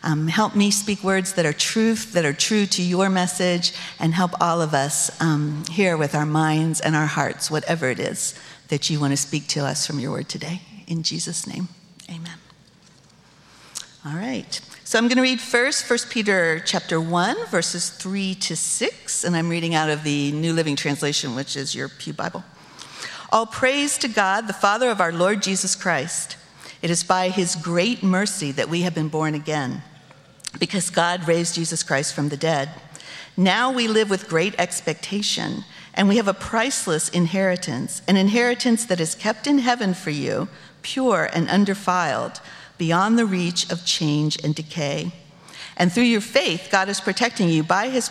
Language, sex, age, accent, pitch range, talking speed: English, female, 50-69, American, 155-195 Hz, 185 wpm